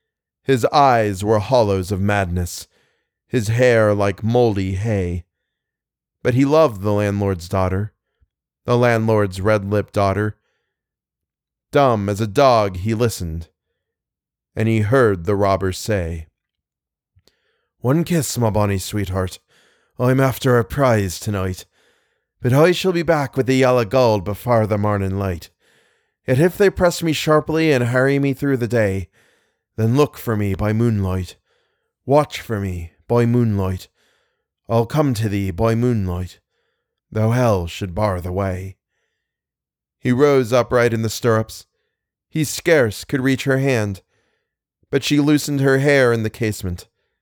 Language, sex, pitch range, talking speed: English, male, 100-130 Hz, 140 wpm